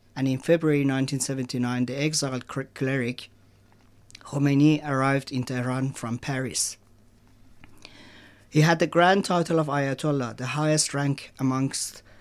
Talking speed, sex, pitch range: 120 wpm, male, 115-140 Hz